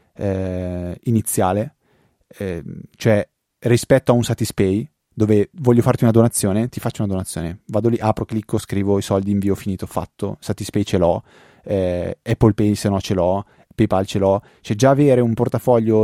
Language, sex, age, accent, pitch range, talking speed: Italian, male, 30-49, native, 100-115 Hz, 160 wpm